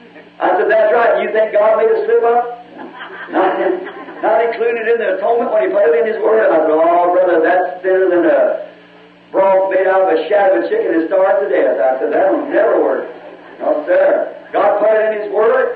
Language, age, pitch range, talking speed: English, 50-69, 215-320 Hz, 230 wpm